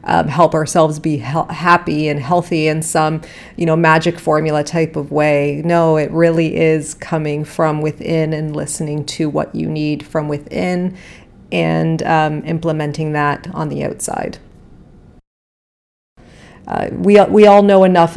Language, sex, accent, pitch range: English, female, American, 155-185 Hz